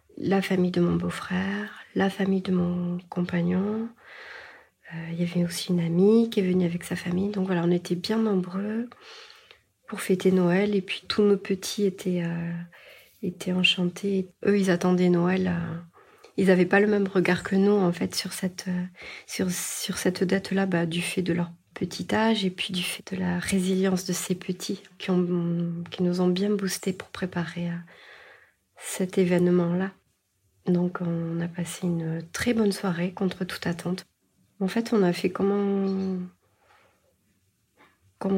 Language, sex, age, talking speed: French, female, 30-49, 175 wpm